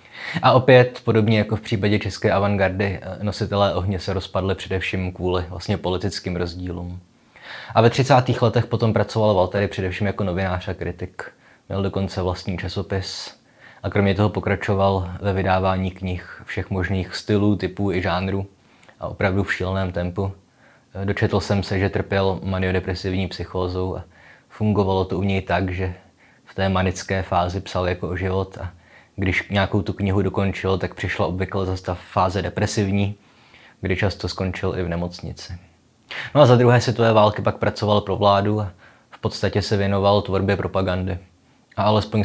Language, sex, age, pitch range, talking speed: Czech, male, 20-39, 90-100 Hz, 160 wpm